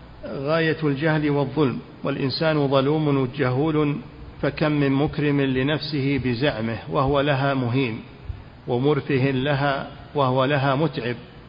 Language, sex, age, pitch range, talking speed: Arabic, male, 50-69, 135-150 Hz, 95 wpm